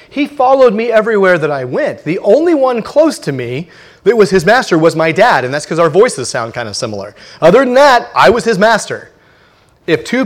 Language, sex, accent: English, male, American